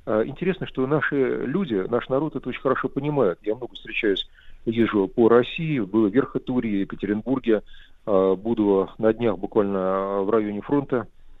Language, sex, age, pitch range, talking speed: Russian, male, 40-59, 105-130 Hz, 140 wpm